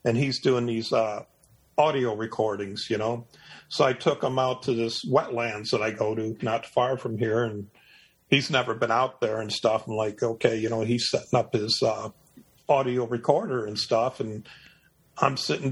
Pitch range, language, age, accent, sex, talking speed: 115-130 Hz, English, 40-59, American, male, 190 wpm